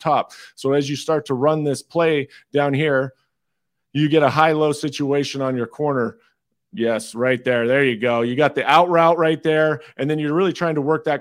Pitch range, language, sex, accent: 130-155 Hz, English, male, American